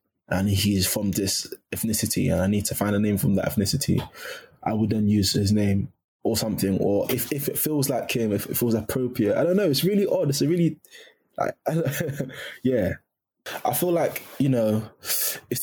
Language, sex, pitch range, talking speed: English, male, 105-130 Hz, 190 wpm